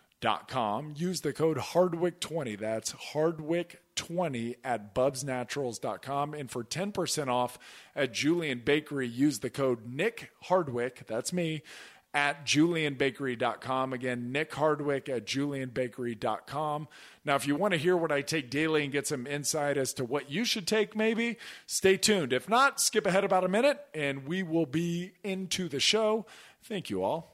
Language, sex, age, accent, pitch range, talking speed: English, male, 40-59, American, 130-170 Hz, 160 wpm